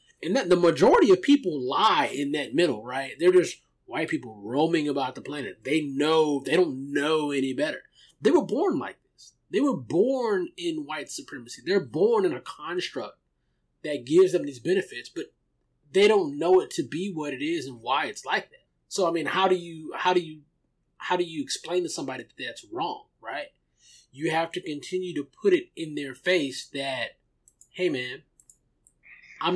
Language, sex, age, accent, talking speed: English, male, 20-39, American, 195 wpm